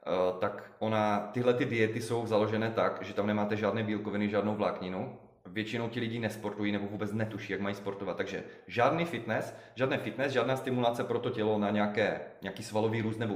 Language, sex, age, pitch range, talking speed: Czech, male, 30-49, 110-130 Hz, 185 wpm